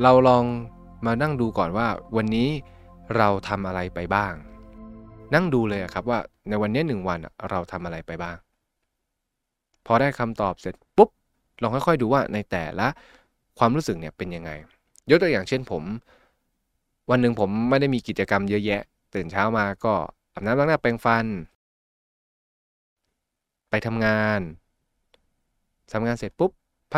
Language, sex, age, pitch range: Thai, male, 20-39, 95-120 Hz